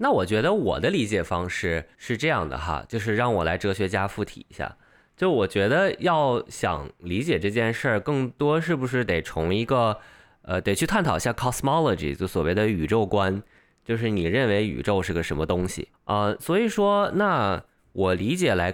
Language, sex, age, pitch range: Chinese, male, 20-39, 90-115 Hz